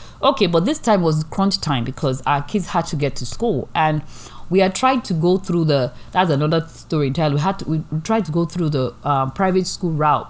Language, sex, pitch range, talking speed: English, female, 135-185 Hz, 235 wpm